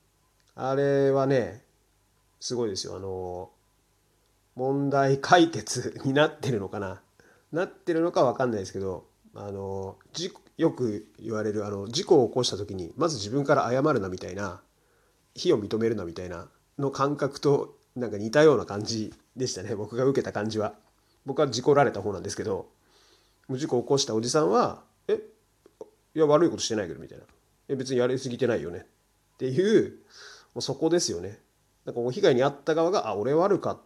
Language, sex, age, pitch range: Japanese, male, 30-49, 105-150 Hz